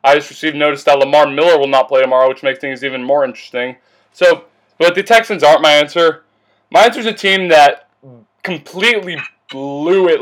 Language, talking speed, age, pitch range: English, 195 wpm, 20-39, 150-195 Hz